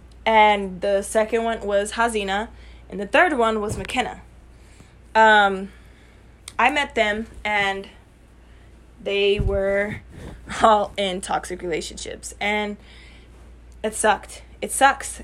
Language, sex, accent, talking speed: English, female, American, 110 wpm